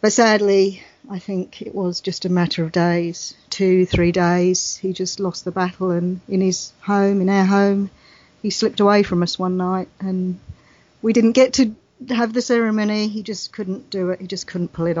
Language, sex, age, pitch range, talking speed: English, female, 40-59, 185-225 Hz, 205 wpm